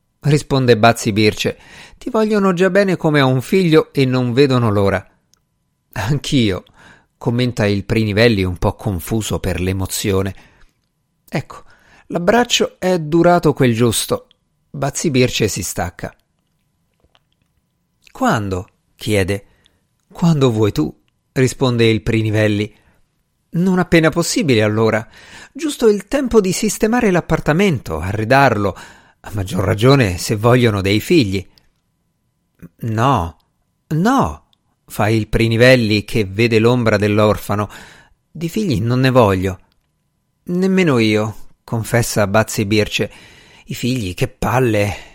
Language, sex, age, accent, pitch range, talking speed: Italian, male, 50-69, native, 105-150 Hz, 110 wpm